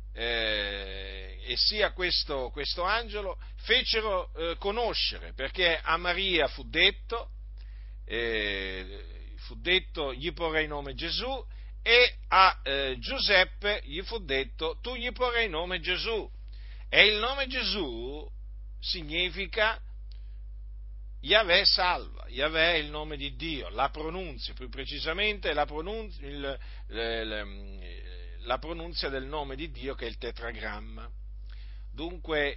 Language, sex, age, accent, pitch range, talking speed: Italian, male, 50-69, native, 115-175 Hz, 125 wpm